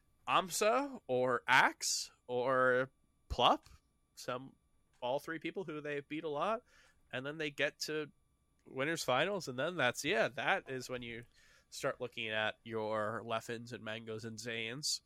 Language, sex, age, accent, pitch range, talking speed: English, male, 20-39, American, 115-150 Hz, 150 wpm